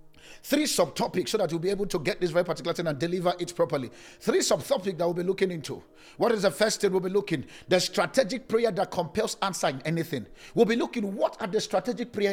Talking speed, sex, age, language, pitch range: 230 wpm, male, 50-69, English, 185-255 Hz